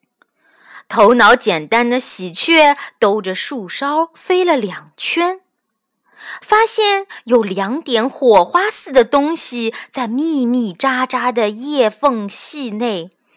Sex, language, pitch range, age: female, Chinese, 205-315 Hz, 20-39